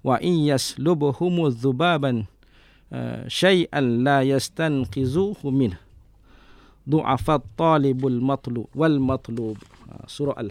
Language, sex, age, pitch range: English, male, 50-69, 130-175 Hz